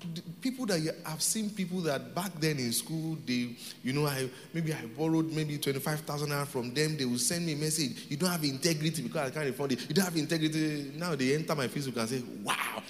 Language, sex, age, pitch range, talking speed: English, male, 30-49, 135-190 Hz, 230 wpm